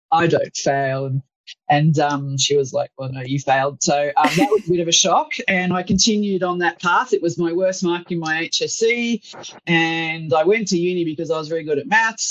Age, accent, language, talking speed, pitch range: 30-49, Australian, English, 230 wpm, 160-200 Hz